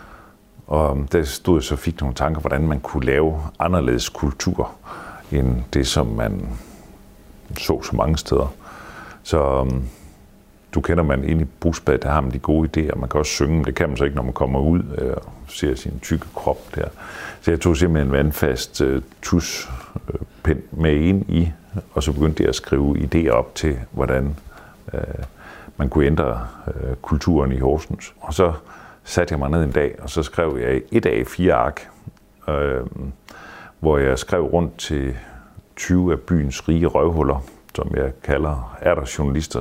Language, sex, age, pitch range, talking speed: Danish, male, 50-69, 70-85 Hz, 175 wpm